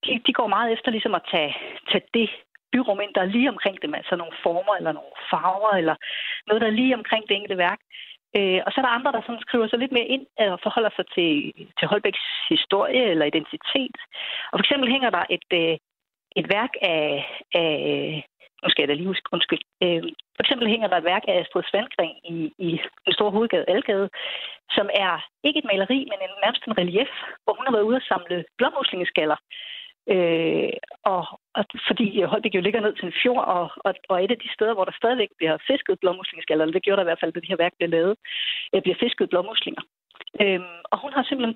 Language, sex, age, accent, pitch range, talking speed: Danish, female, 30-49, native, 185-250 Hz, 190 wpm